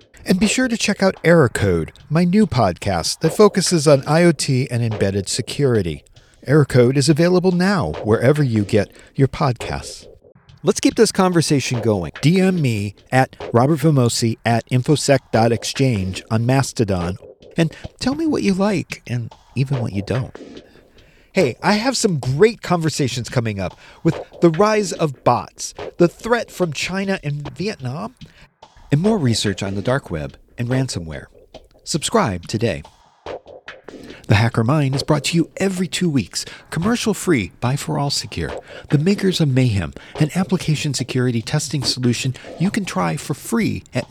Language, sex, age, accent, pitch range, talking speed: English, male, 40-59, American, 115-175 Hz, 155 wpm